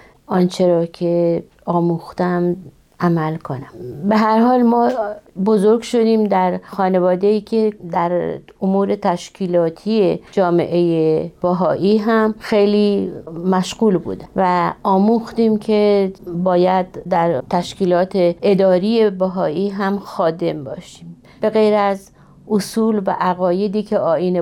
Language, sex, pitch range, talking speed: Persian, female, 175-210 Hz, 110 wpm